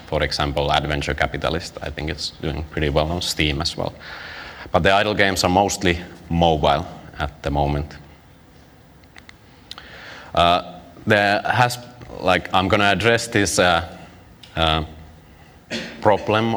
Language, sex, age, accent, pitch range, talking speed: English, male, 30-49, Finnish, 75-90 Hz, 125 wpm